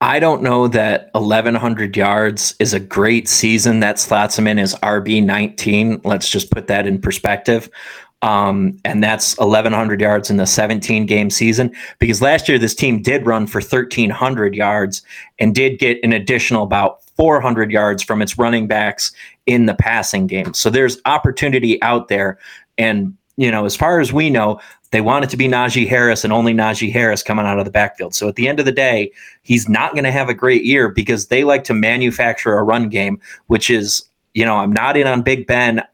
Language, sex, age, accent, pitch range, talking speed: English, male, 30-49, American, 105-125 Hz, 200 wpm